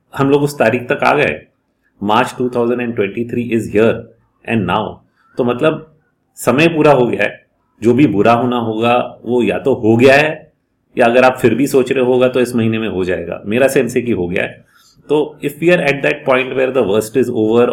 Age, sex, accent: 30-49, male, Indian